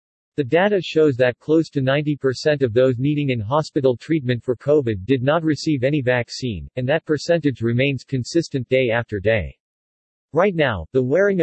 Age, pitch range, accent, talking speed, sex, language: 50-69, 120-150 Hz, American, 165 wpm, male, English